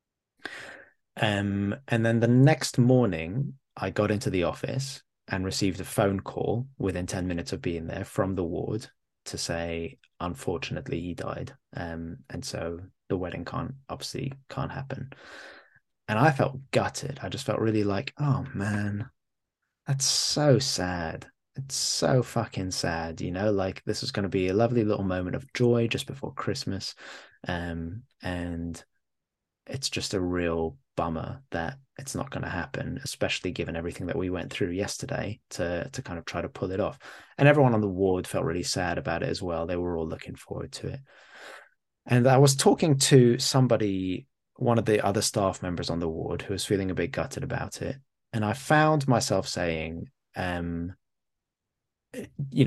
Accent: British